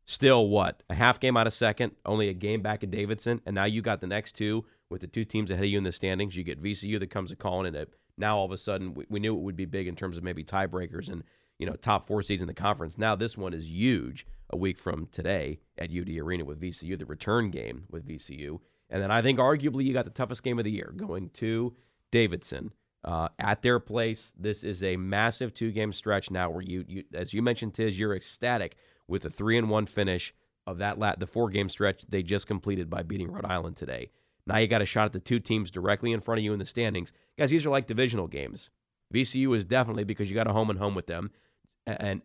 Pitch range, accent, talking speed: 95-115 Hz, American, 255 wpm